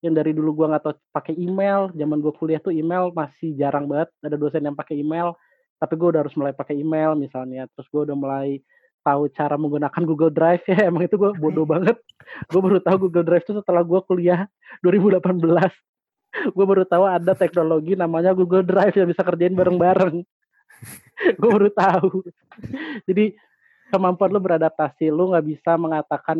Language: Indonesian